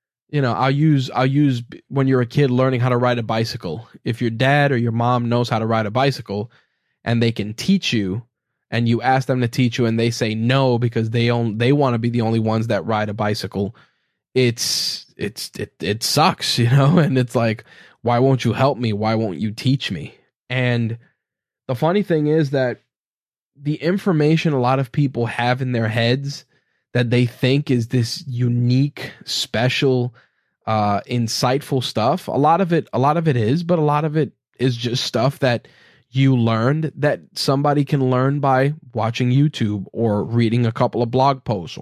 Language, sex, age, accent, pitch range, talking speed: English, male, 10-29, American, 115-140 Hz, 200 wpm